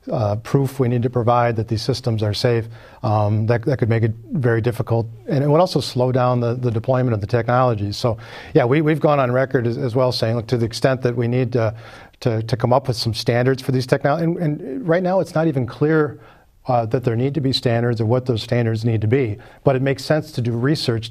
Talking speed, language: 255 wpm, English